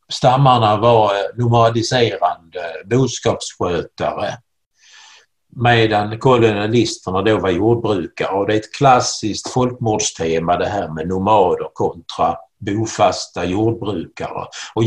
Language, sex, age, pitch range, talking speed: Swedish, male, 60-79, 100-120 Hz, 95 wpm